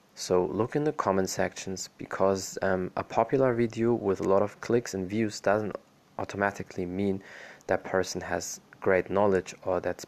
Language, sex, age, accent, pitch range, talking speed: German, male, 20-39, German, 95-110 Hz, 165 wpm